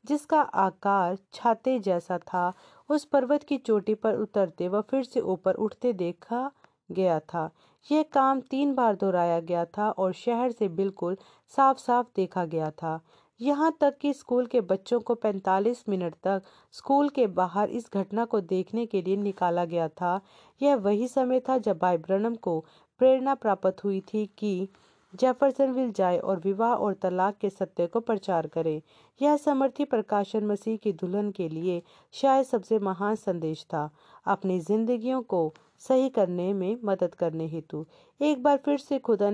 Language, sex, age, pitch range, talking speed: Hindi, female, 40-59, 185-245 Hz, 165 wpm